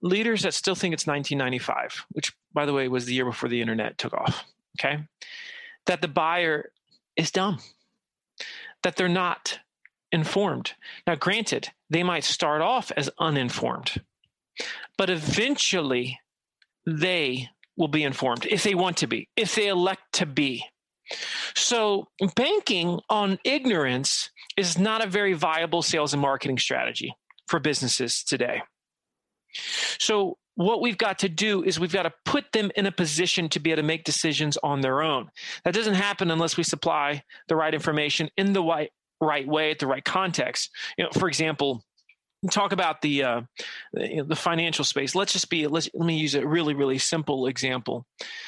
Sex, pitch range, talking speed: male, 145-195 Hz, 165 wpm